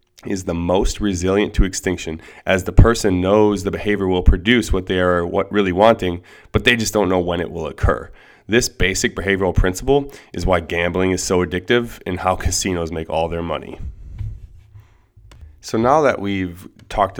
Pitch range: 85-105 Hz